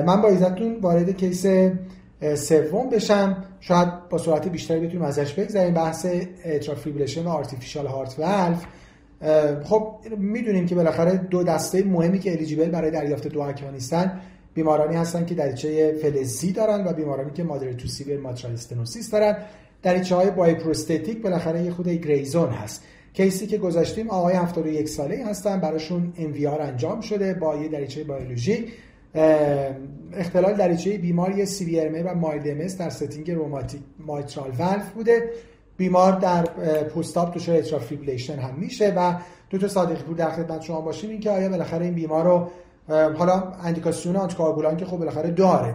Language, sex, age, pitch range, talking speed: Persian, male, 30-49, 150-185 Hz, 150 wpm